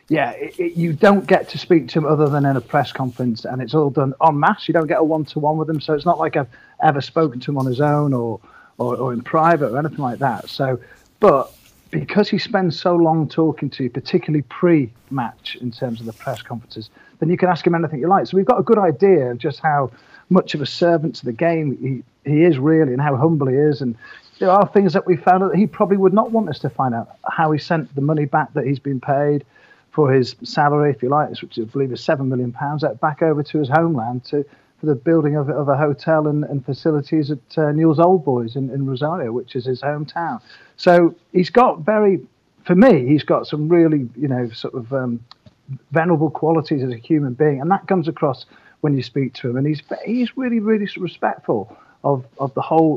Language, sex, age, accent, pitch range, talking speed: English, male, 40-59, British, 135-170 Hz, 240 wpm